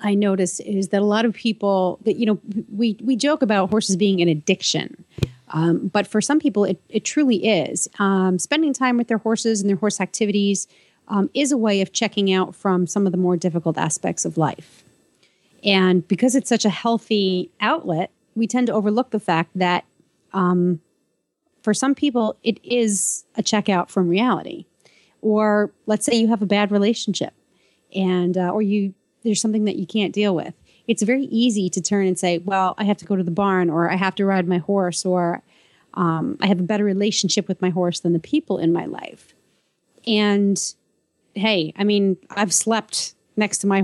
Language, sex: English, female